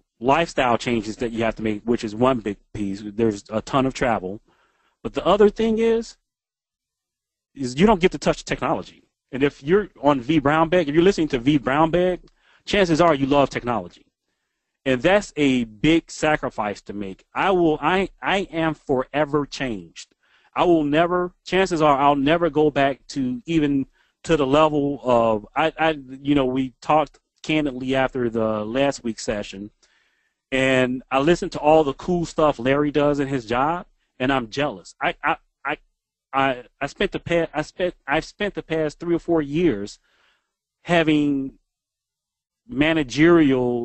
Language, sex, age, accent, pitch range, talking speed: English, male, 30-49, American, 120-160 Hz, 165 wpm